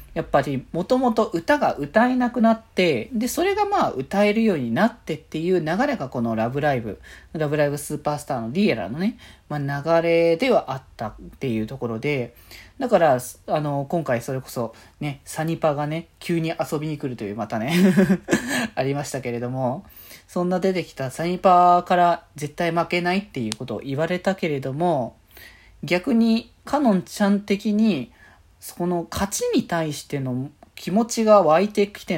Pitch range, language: 135-205 Hz, Japanese